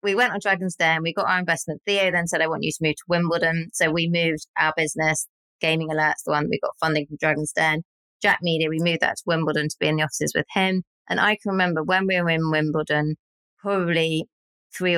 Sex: female